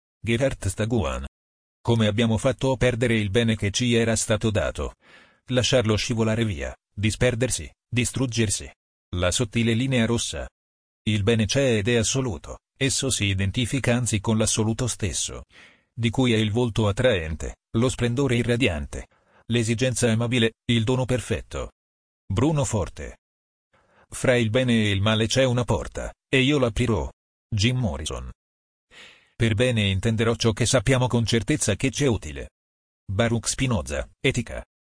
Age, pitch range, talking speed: 40-59, 95-120 Hz, 135 wpm